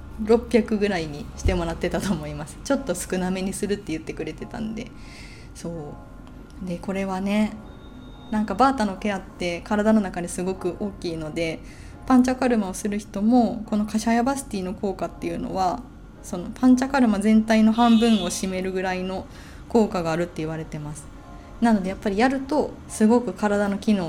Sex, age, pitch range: female, 20-39, 170-220 Hz